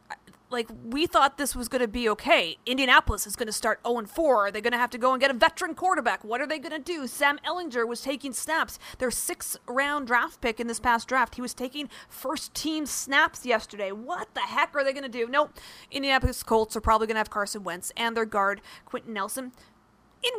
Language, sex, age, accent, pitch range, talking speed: English, female, 30-49, American, 220-275 Hz, 225 wpm